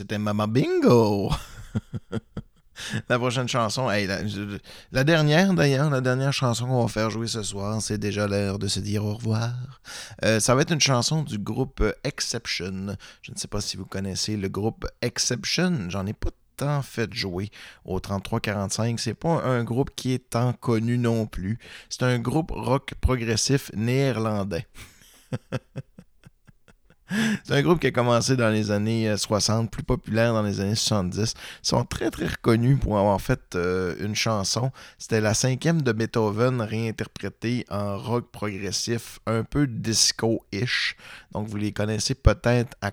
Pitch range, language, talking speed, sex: 105-130 Hz, French, 160 wpm, male